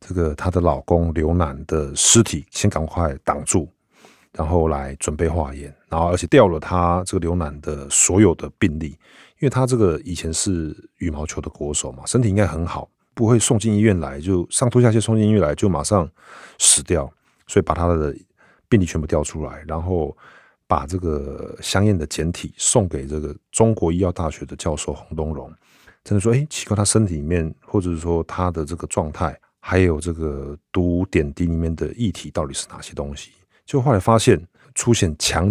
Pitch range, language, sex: 75-100 Hz, Chinese, male